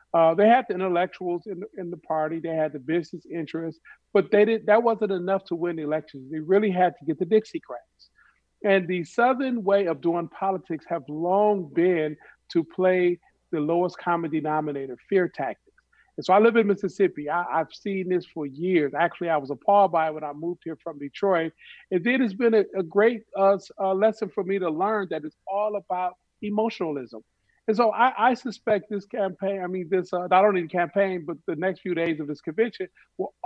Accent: American